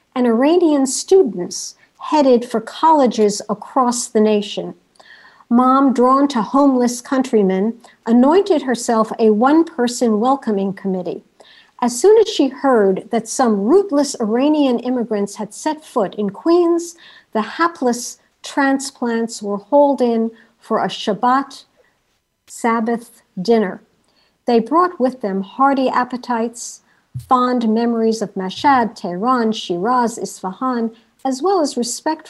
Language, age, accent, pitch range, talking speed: English, 50-69, American, 210-260 Hz, 115 wpm